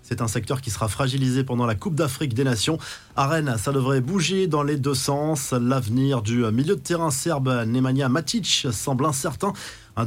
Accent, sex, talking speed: French, male, 190 wpm